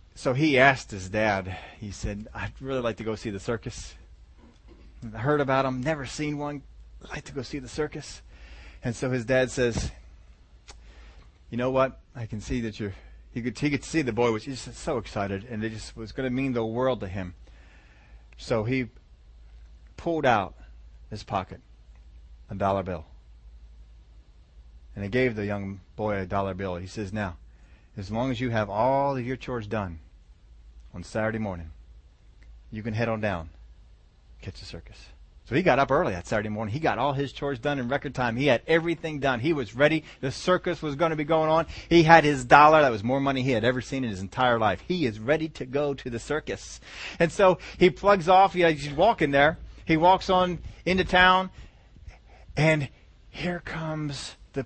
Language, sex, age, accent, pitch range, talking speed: English, male, 30-49, American, 95-150 Hz, 195 wpm